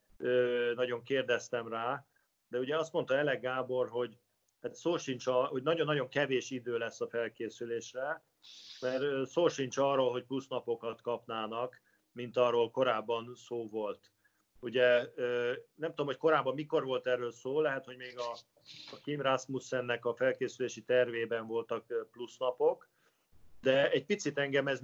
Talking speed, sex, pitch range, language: 145 wpm, male, 120-140 Hz, Hungarian